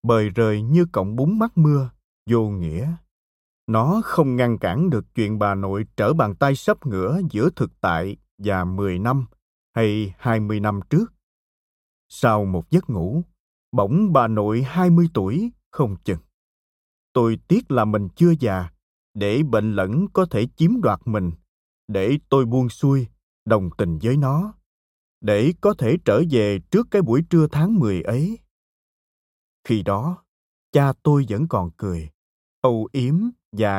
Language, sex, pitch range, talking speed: Vietnamese, male, 100-160 Hz, 160 wpm